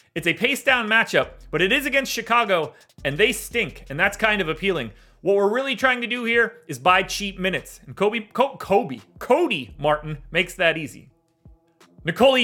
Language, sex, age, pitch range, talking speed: English, male, 30-49, 175-230 Hz, 190 wpm